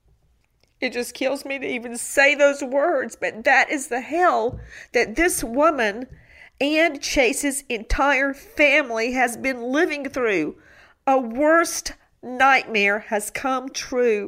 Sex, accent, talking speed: female, American, 130 wpm